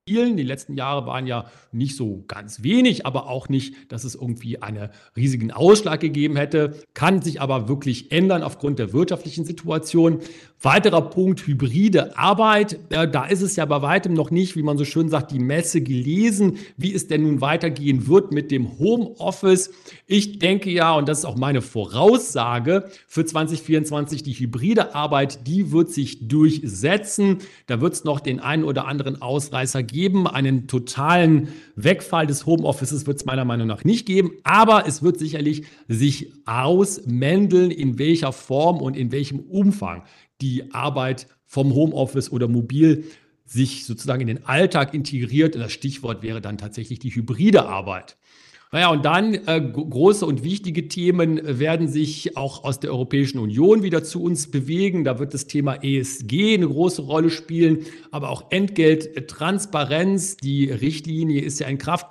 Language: German